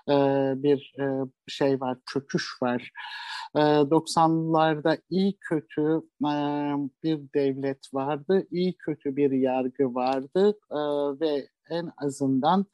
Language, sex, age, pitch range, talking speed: Turkish, male, 50-69, 135-165 Hz, 90 wpm